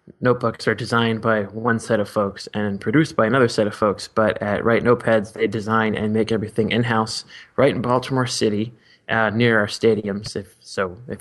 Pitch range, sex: 105-120 Hz, male